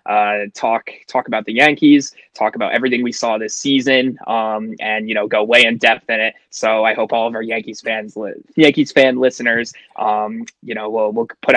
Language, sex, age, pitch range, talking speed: English, male, 20-39, 110-135 Hz, 205 wpm